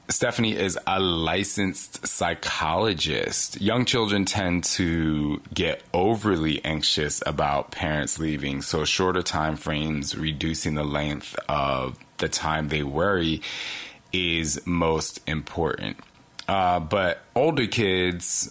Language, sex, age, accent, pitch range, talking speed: English, male, 30-49, American, 80-100 Hz, 110 wpm